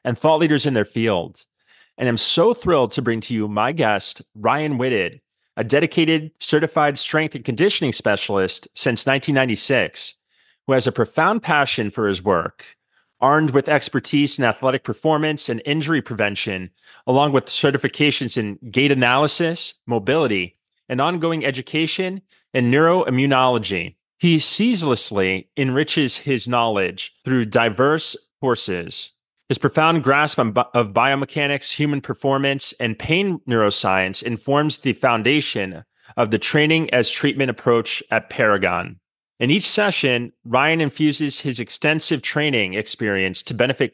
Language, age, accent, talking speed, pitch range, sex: English, 30-49, American, 130 wpm, 115-150 Hz, male